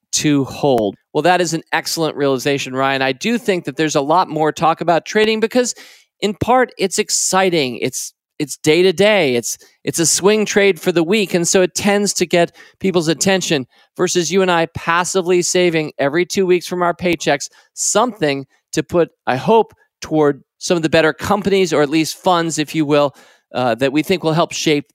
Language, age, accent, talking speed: English, 40-59, American, 195 wpm